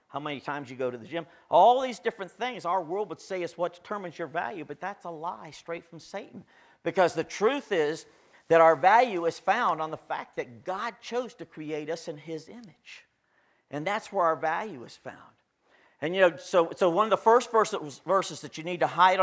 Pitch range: 155-190 Hz